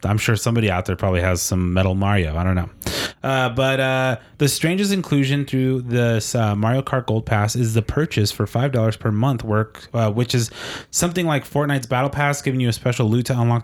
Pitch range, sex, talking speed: 115-135 Hz, male, 215 wpm